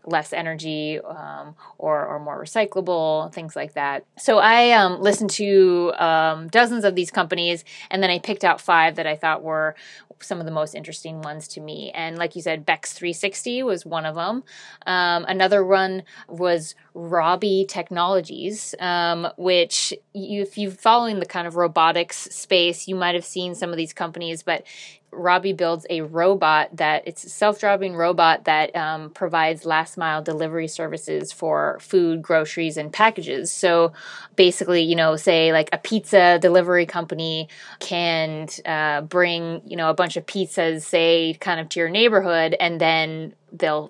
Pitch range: 160-185 Hz